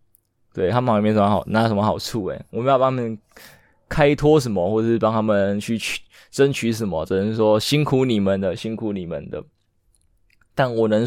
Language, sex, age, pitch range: Chinese, male, 20-39, 105-120 Hz